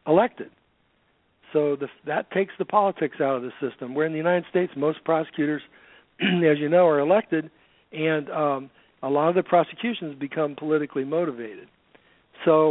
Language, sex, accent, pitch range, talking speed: English, male, American, 130-160 Hz, 160 wpm